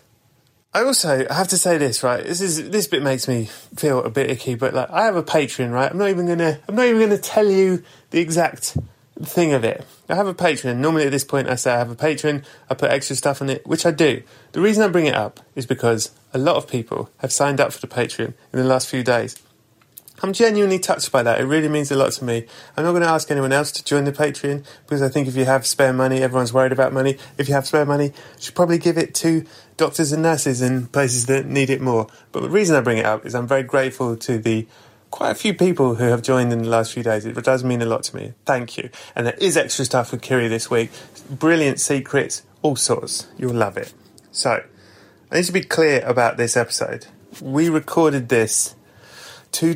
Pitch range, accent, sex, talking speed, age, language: 125-160 Hz, British, male, 245 wpm, 30-49, English